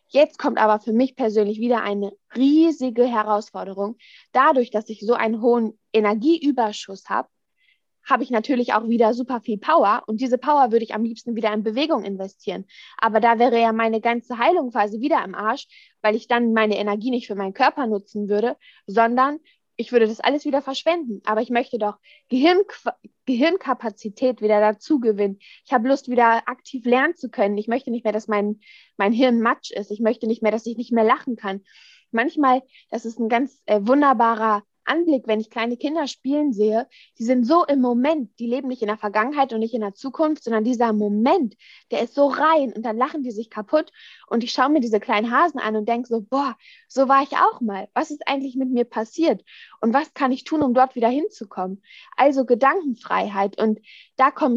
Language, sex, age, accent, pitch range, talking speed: German, female, 20-39, German, 220-275 Hz, 200 wpm